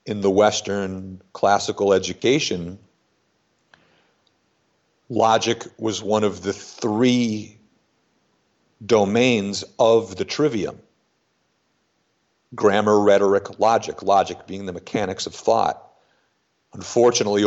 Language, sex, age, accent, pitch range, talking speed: English, male, 50-69, American, 95-110 Hz, 85 wpm